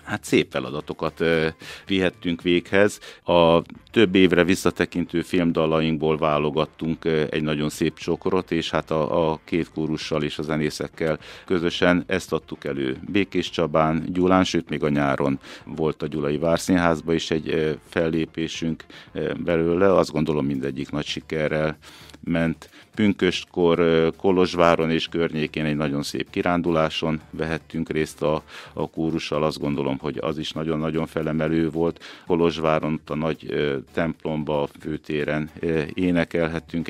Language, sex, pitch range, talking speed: Hungarian, male, 75-85 Hz, 125 wpm